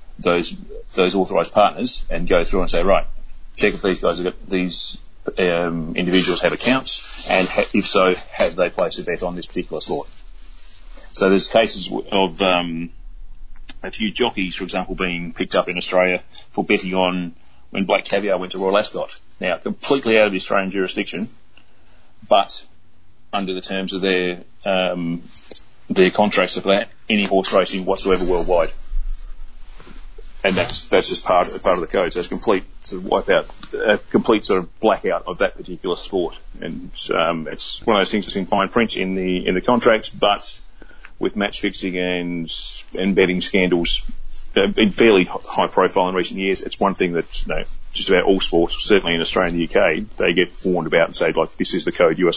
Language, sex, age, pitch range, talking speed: English, male, 30-49, 90-95 Hz, 190 wpm